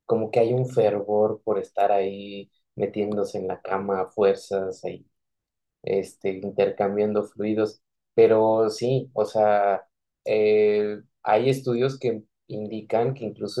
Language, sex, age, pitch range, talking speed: Spanish, male, 20-39, 105-135 Hz, 130 wpm